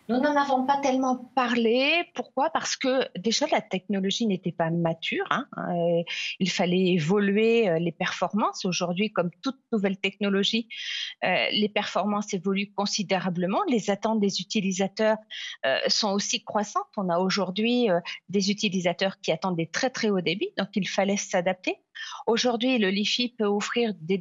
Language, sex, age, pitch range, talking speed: French, female, 50-69, 185-240 Hz, 145 wpm